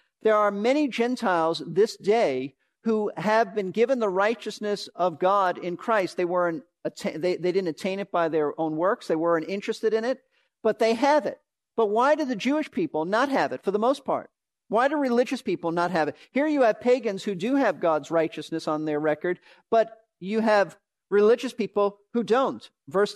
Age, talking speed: 50-69, 200 wpm